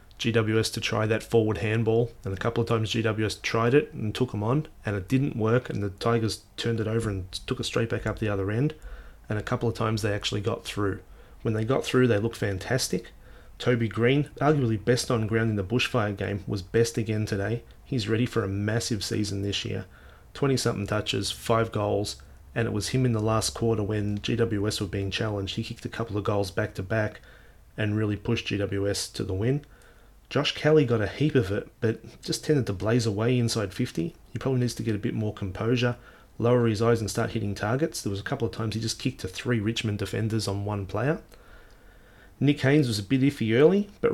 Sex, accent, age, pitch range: male, Australian, 30-49, 105-120 Hz